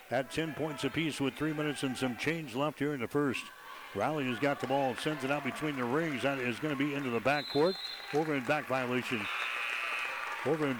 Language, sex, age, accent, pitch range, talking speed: English, male, 60-79, American, 125-145 Hz, 215 wpm